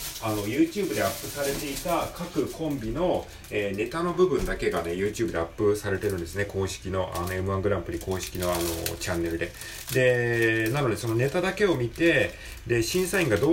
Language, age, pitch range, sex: Japanese, 40-59, 90-130 Hz, male